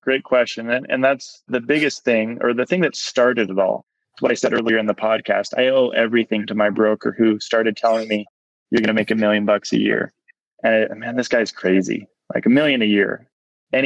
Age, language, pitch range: 20-39, English, 110-130 Hz